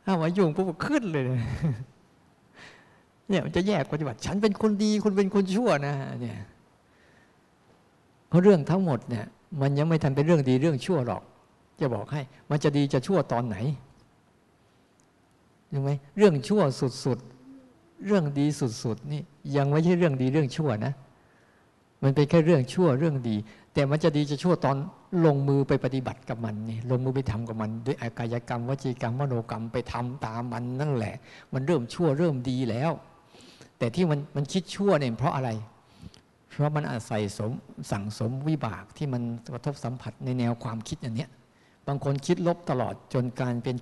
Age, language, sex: 60-79, Thai, male